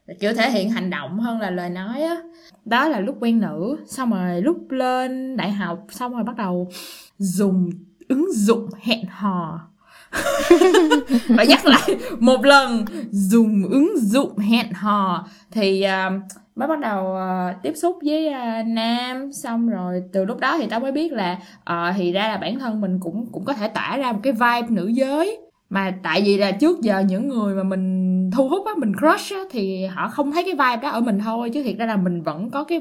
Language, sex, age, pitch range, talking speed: Vietnamese, female, 20-39, 195-270 Hz, 205 wpm